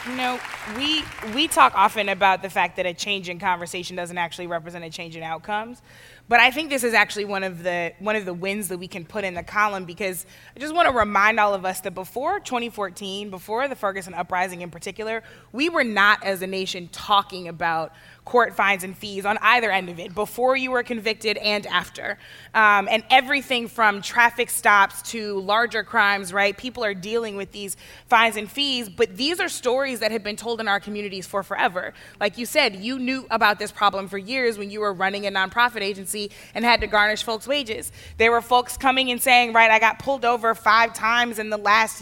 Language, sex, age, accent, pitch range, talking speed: English, female, 20-39, American, 195-235 Hz, 215 wpm